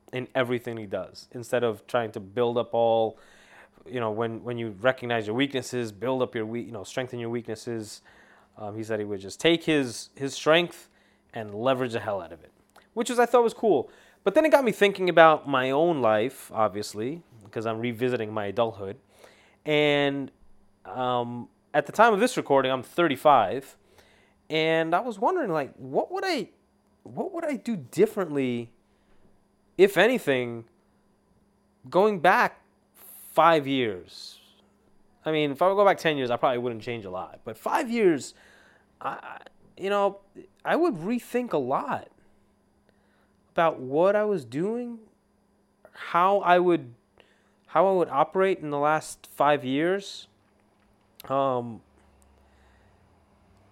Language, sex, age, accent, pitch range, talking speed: English, male, 20-39, American, 110-175 Hz, 155 wpm